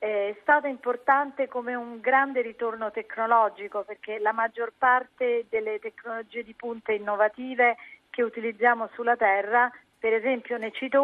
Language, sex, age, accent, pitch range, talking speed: Italian, female, 40-59, native, 220-250 Hz, 135 wpm